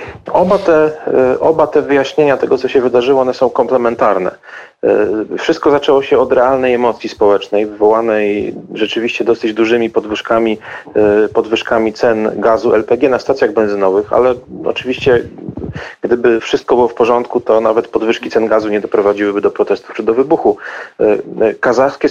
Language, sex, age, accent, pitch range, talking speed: Polish, male, 40-59, native, 115-155 Hz, 135 wpm